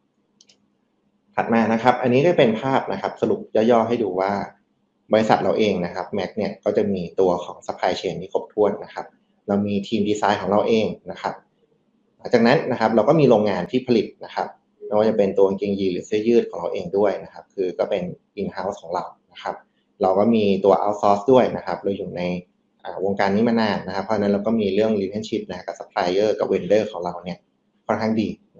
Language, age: Thai, 20-39